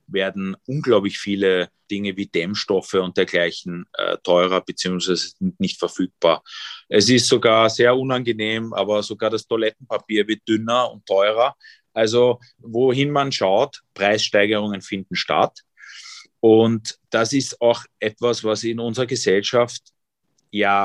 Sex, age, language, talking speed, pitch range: male, 30-49, German, 125 wpm, 100-120 Hz